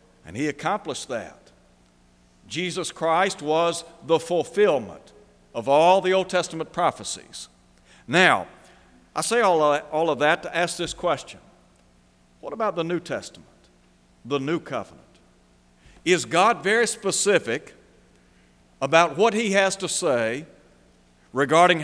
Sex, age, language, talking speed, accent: male, 60-79, English, 120 wpm, American